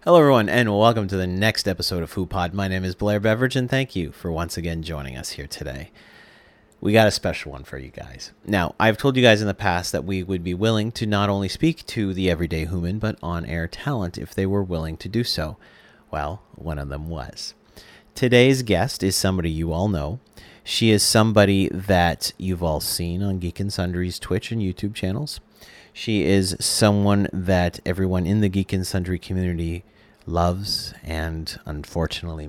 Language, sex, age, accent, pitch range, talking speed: English, male, 30-49, American, 85-105 Hz, 190 wpm